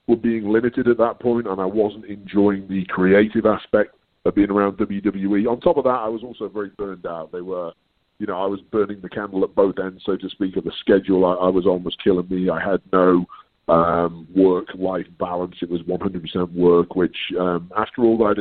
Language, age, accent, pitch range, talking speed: English, 30-49, British, 95-110 Hz, 220 wpm